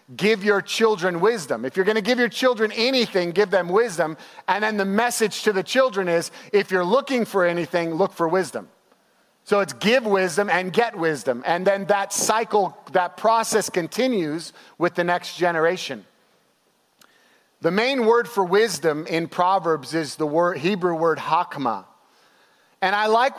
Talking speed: 165 wpm